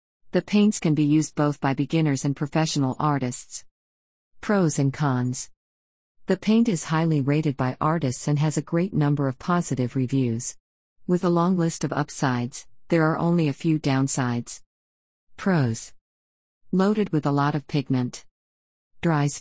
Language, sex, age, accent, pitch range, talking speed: English, female, 40-59, American, 125-160 Hz, 150 wpm